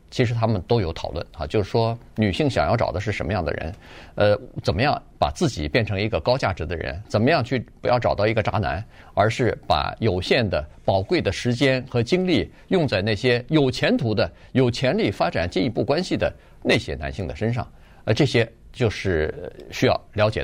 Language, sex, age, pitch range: Chinese, male, 50-69, 100-140 Hz